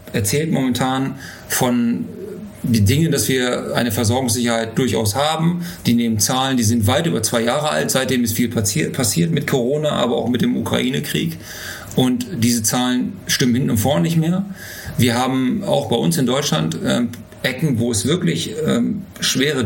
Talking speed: 160 wpm